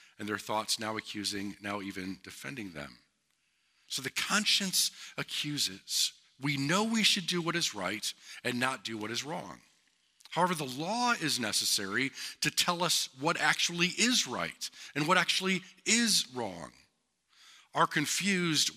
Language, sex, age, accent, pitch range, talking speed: English, male, 50-69, American, 110-180 Hz, 145 wpm